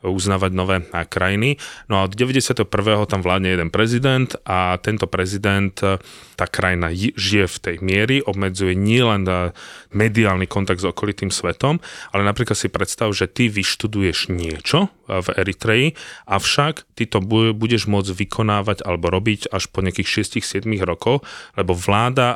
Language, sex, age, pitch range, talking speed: Slovak, male, 30-49, 95-110 Hz, 140 wpm